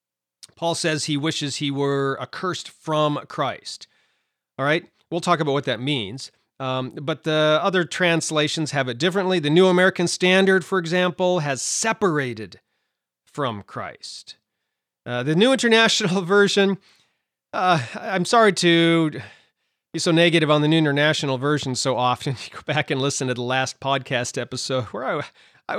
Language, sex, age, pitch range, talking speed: English, male, 40-59, 135-180 Hz, 155 wpm